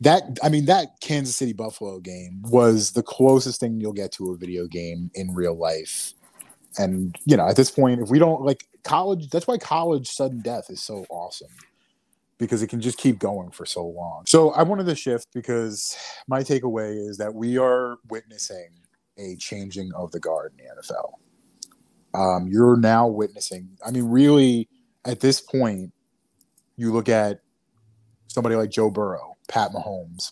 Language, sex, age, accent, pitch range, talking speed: English, male, 30-49, American, 95-125 Hz, 175 wpm